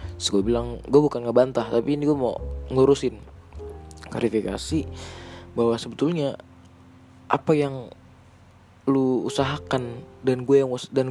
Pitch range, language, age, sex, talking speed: 95-135 Hz, Indonesian, 20-39, male, 120 wpm